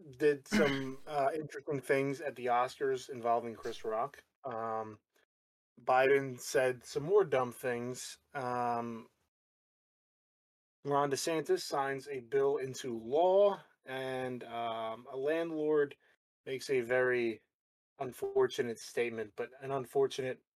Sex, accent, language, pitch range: male, American, English, 115-155 Hz